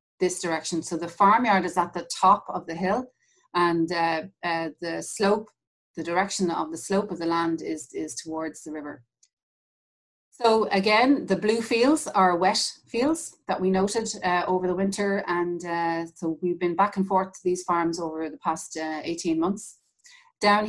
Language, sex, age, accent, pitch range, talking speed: English, female, 30-49, Irish, 165-200 Hz, 185 wpm